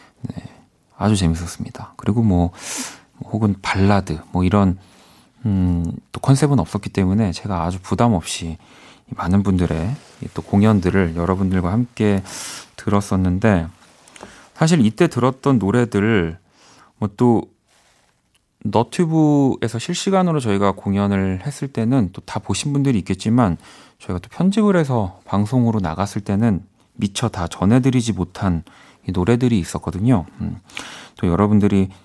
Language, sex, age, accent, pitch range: Korean, male, 40-59, native, 90-120 Hz